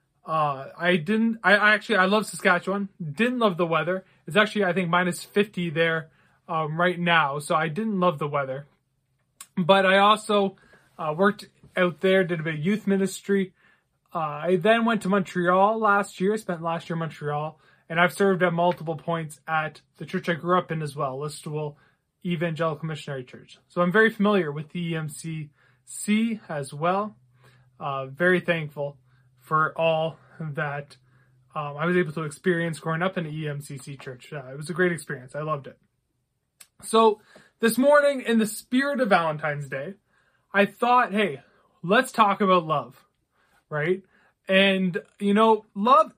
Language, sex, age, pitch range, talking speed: English, male, 20-39, 155-200 Hz, 170 wpm